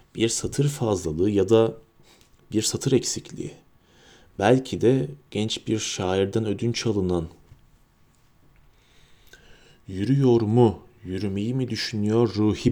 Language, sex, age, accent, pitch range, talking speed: Turkish, male, 40-59, native, 105-130 Hz, 100 wpm